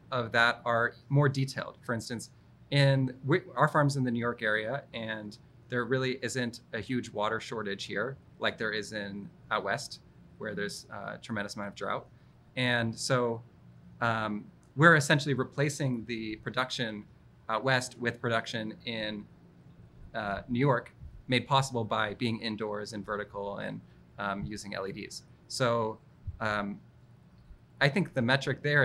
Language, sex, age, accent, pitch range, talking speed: English, male, 30-49, American, 105-130 Hz, 150 wpm